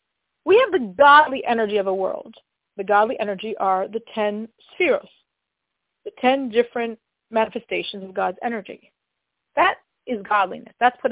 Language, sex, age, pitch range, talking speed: English, female, 40-59, 220-305 Hz, 145 wpm